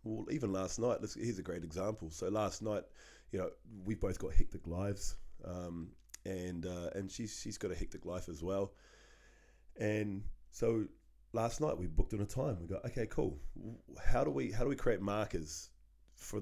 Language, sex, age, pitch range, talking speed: English, male, 20-39, 90-110 Hz, 195 wpm